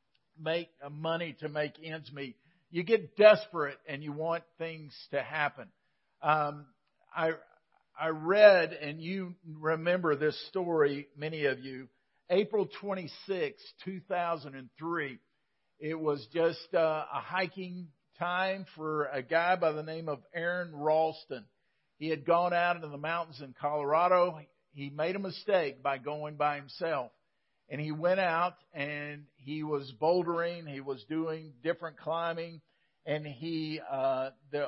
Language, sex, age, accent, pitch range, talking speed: English, male, 50-69, American, 150-180 Hz, 140 wpm